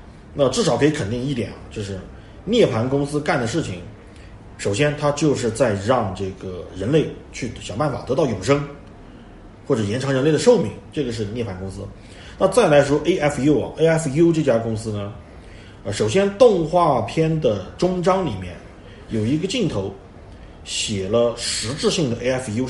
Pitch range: 100-150 Hz